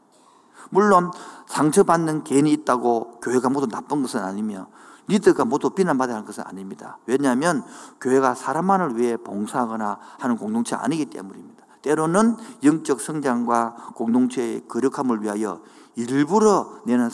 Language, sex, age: Korean, male, 50-69